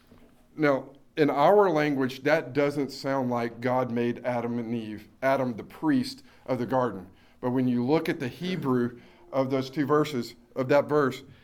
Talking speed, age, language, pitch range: 175 wpm, 50-69, English, 125-155 Hz